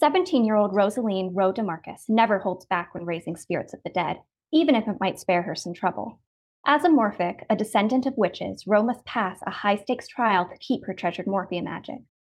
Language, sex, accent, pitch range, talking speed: English, female, American, 190-235 Hz, 195 wpm